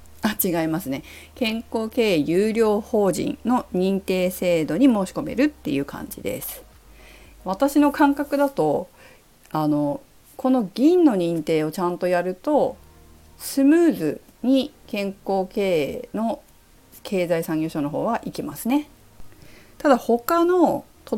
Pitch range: 180-270 Hz